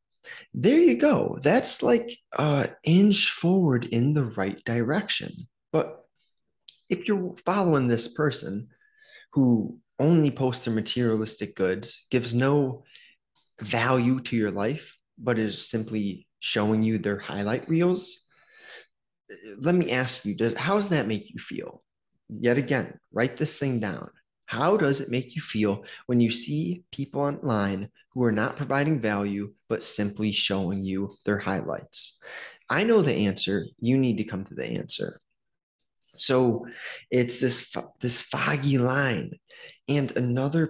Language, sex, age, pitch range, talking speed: English, male, 20-39, 110-170 Hz, 140 wpm